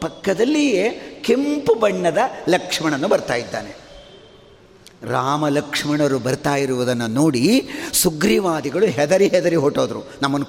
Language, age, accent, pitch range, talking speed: Kannada, 50-69, native, 160-235 Hz, 90 wpm